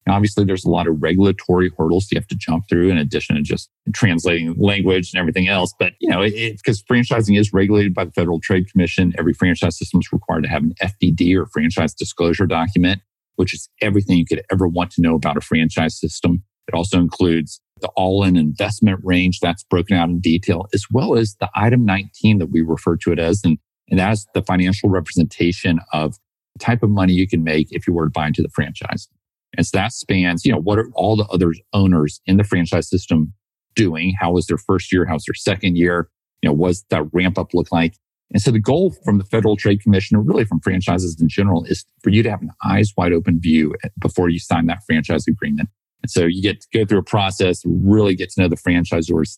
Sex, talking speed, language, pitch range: male, 230 wpm, English, 85-100 Hz